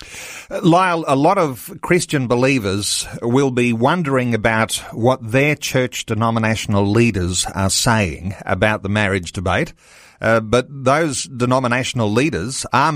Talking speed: 125 wpm